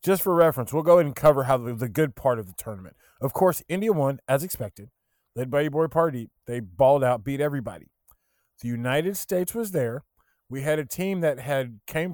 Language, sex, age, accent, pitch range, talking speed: English, male, 20-39, American, 125-175 Hz, 215 wpm